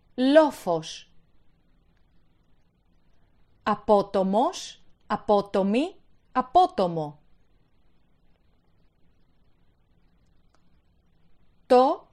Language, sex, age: Greek, female, 30-49